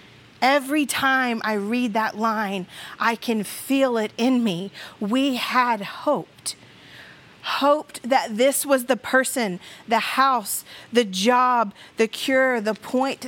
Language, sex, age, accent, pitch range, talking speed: English, female, 40-59, American, 210-255 Hz, 130 wpm